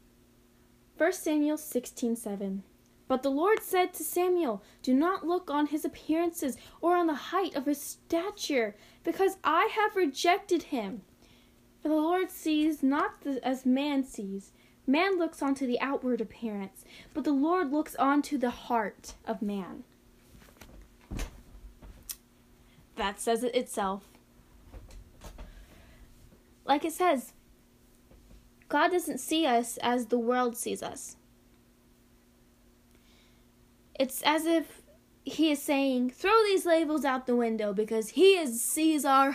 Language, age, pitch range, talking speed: English, 10-29, 220-320 Hz, 130 wpm